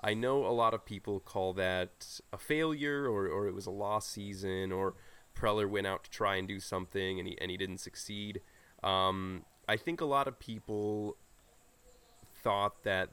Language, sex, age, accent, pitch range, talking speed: English, male, 20-39, American, 95-115 Hz, 185 wpm